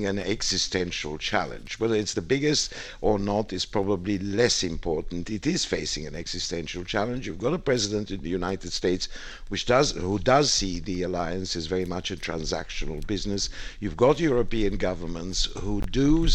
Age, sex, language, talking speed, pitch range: 60-79, male, English, 170 wpm, 90-120 Hz